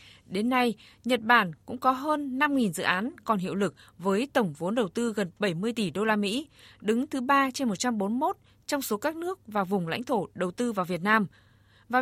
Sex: female